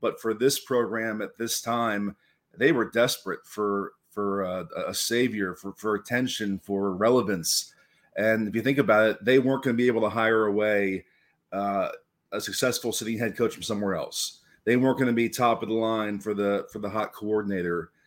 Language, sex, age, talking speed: English, male, 40-59, 195 wpm